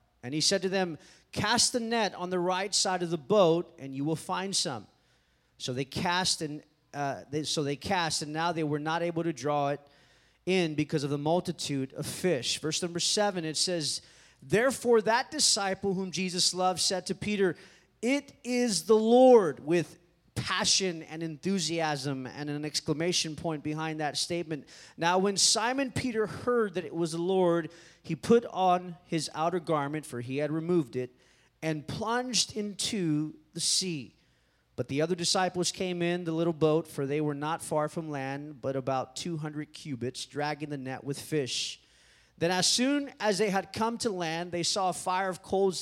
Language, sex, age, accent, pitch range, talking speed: English, male, 30-49, American, 150-185 Hz, 185 wpm